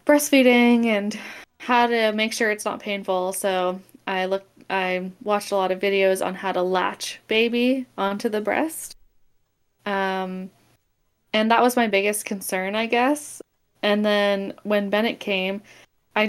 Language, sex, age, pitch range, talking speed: English, female, 20-39, 190-220 Hz, 150 wpm